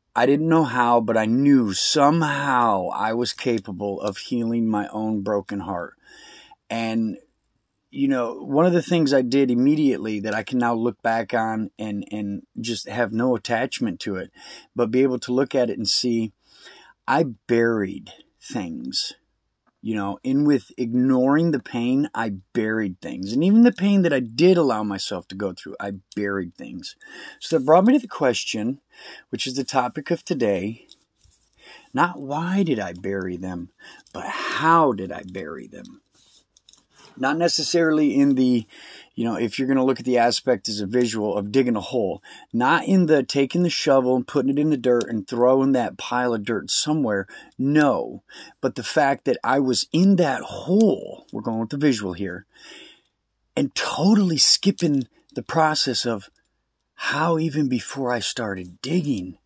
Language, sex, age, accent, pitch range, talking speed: English, male, 30-49, American, 110-150 Hz, 175 wpm